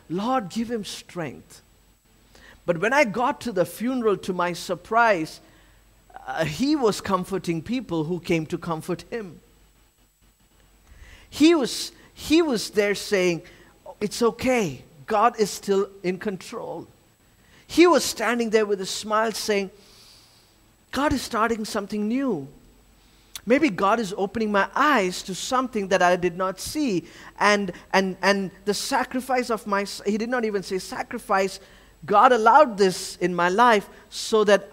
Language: English